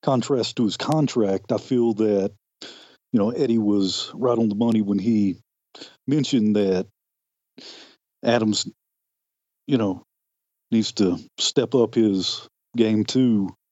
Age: 40-59